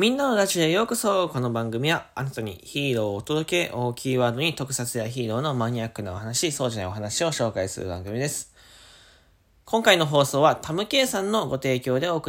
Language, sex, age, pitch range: Japanese, male, 20-39, 100-150 Hz